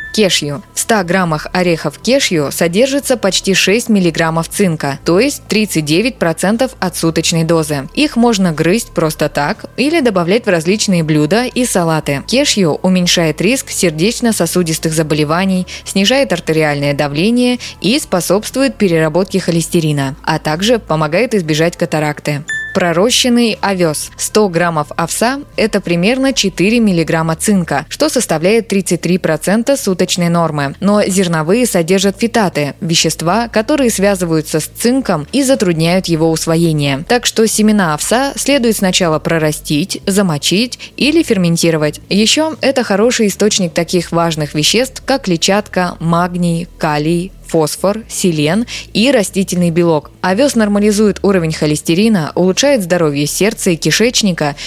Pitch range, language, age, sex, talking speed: 160-220 Hz, Russian, 20-39, female, 120 wpm